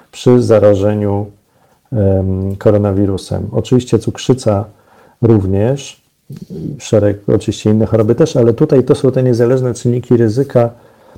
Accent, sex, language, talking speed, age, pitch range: native, male, Polish, 100 wpm, 40-59, 105-120 Hz